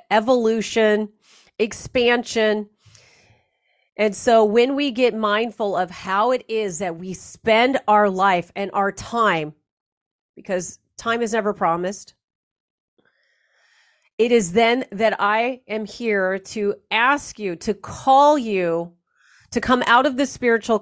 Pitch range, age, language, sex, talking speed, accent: 195-245 Hz, 40-59, English, female, 125 wpm, American